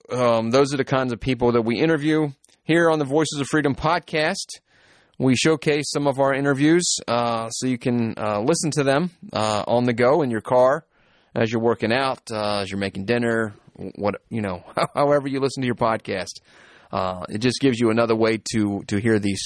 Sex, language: male, English